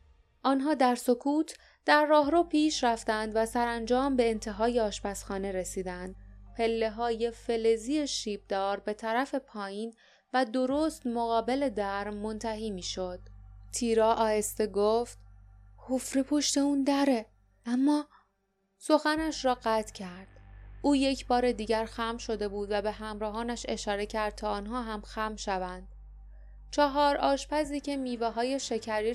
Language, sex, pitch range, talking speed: Persian, female, 205-255 Hz, 125 wpm